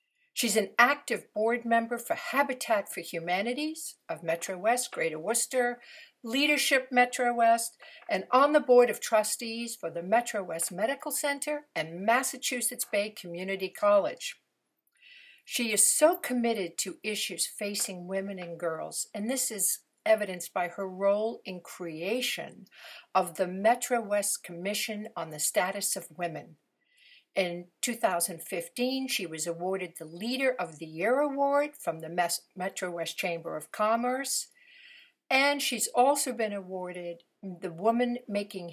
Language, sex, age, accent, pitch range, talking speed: English, female, 60-79, American, 185-260 Hz, 140 wpm